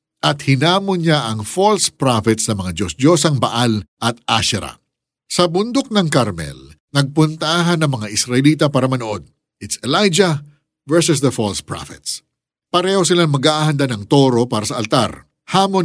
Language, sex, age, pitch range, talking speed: Filipino, male, 50-69, 120-180 Hz, 145 wpm